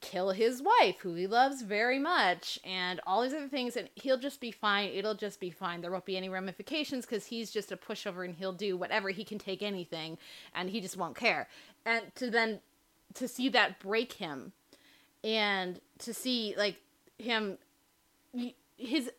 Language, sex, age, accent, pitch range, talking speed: English, female, 20-39, American, 195-255 Hz, 185 wpm